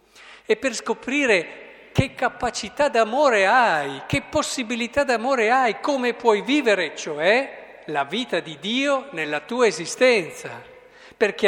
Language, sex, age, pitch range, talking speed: Italian, male, 50-69, 150-225 Hz, 120 wpm